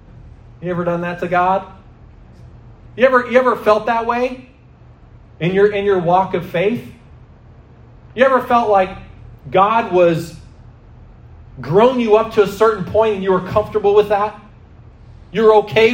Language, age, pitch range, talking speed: English, 30-49, 140-220 Hz, 155 wpm